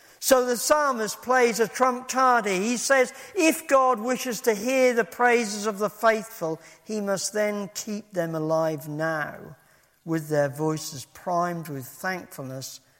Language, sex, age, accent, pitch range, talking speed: English, male, 50-69, British, 165-220 Hz, 150 wpm